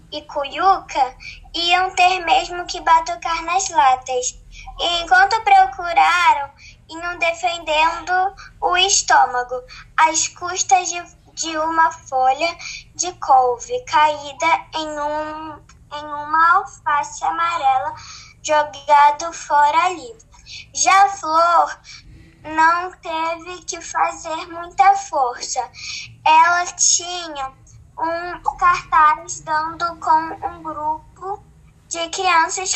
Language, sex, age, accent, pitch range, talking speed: Portuguese, male, 10-29, Brazilian, 310-370 Hz, 95 wpm